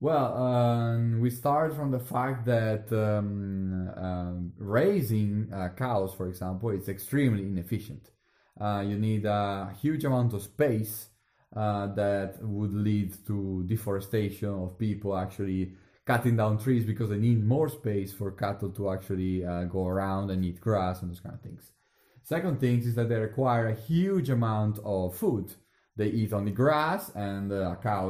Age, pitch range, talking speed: 30-49, 100-120 Hz, 165 wpm